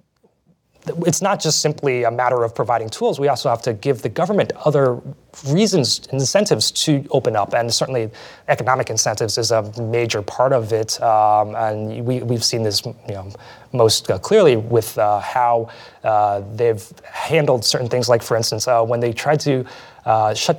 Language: English